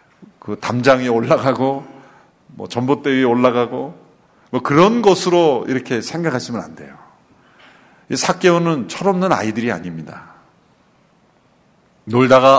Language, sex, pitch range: Korean, male, 115-165 Hz